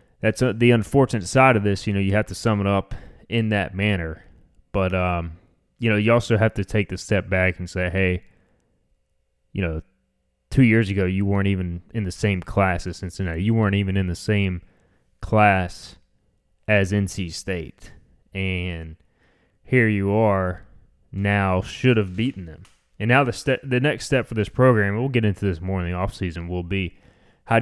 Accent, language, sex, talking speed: American, English, male, 185 wpm